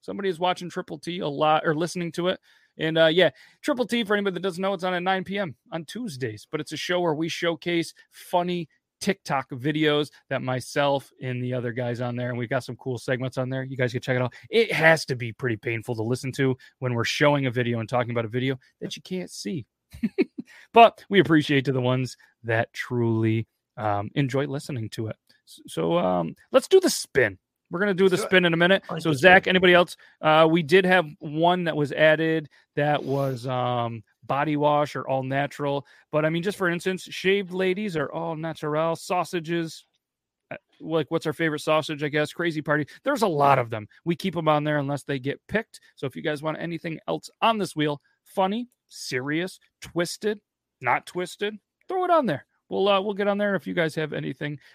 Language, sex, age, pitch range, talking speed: English, male, 30-49, 130-180 Hz, 215 wpm